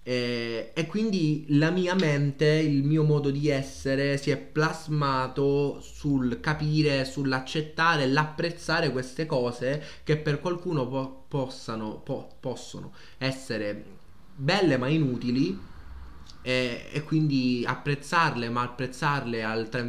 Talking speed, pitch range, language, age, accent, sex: 115 wpm, 110-145 Hz, Italian, 20-39, native, male